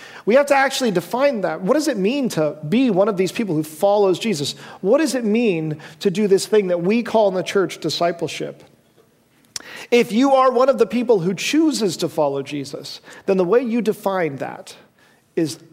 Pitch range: 170-230 Hz